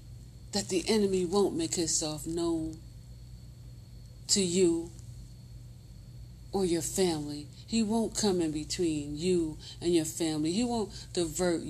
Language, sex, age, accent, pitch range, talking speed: English, female, 40-59, American, 120-195 Hz, 125 wpm